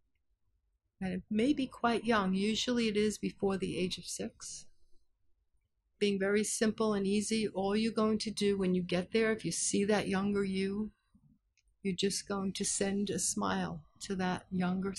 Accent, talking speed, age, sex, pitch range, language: American, 175 wpm, 60-79, female, 165-205 Hz, English